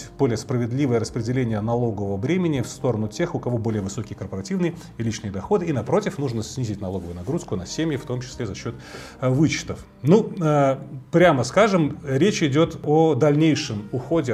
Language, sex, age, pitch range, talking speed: Russian, male, 30-49, 115-155 Hz, 160 wpm